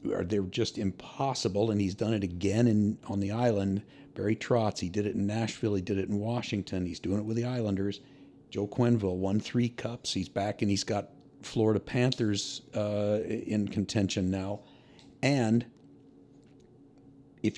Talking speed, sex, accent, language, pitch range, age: 165 wpm, male, American, English, 100-125 Hz, 50-69